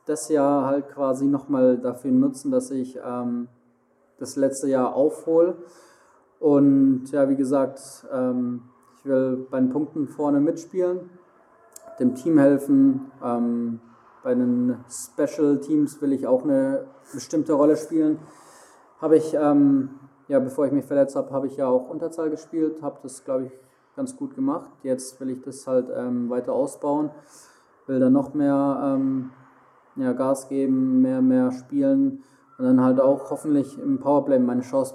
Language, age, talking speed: German, 20-39, 160 wpm